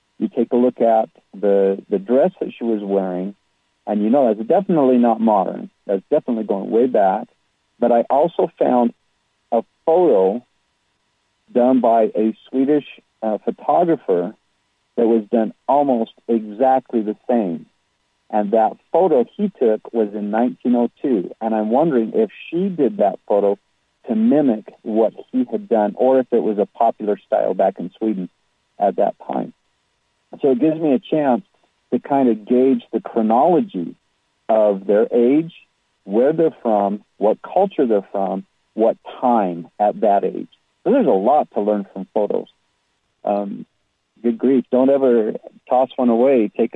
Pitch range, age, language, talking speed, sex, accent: 105-125 Hz, 50-69, English, 155 wpm, male, American